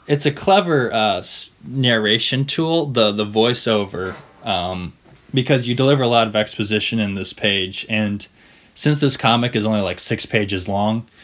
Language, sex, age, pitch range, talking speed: English, male, 20-39, 95-115 Hz, 160 wpm